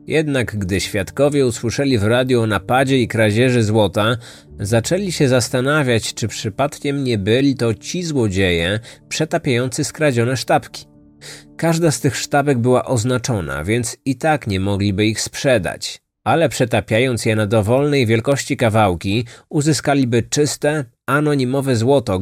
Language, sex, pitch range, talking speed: Polish, male, 110-140 Hz, 130 wpm